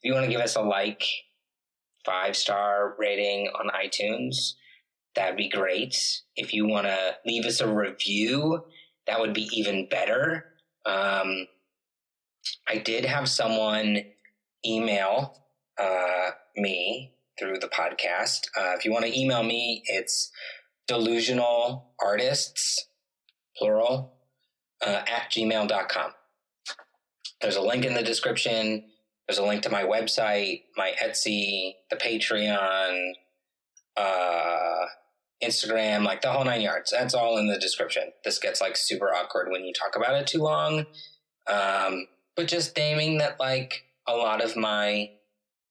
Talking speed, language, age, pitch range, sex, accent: 135 wpm, English, 30-49, 100-130 Hz, male, American